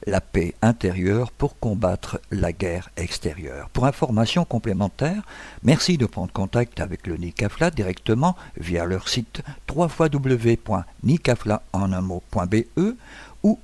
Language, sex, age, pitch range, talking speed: French, male, 60-79, 100-135 Hz, 105 wpm